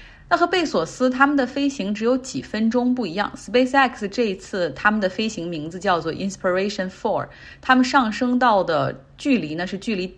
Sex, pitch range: female, 170-240 Hz